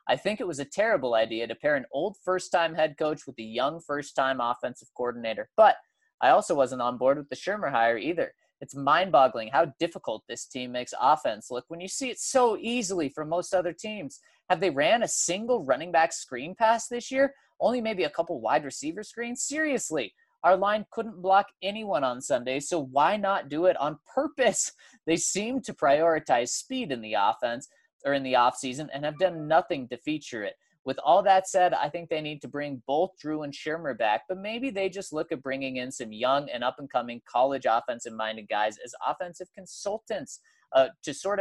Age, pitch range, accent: 20-39, 130-190 Hz, American